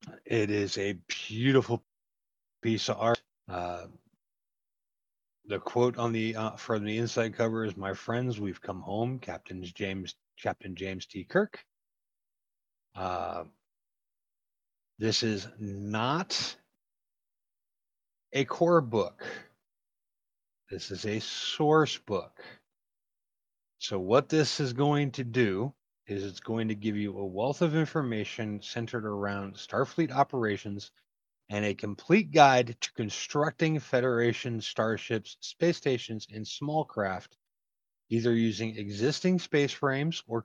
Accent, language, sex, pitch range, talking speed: American, English, male, 100-130 Hz, 120 wpm